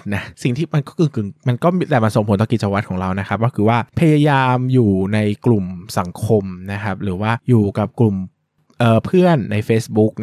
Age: 20-39